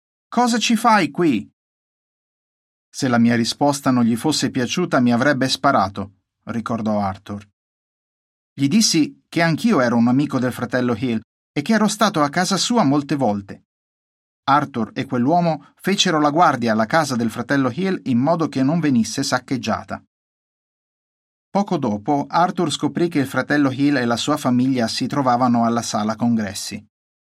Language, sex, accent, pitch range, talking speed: Italian, male, native, 120-165 Hz, 155 wpm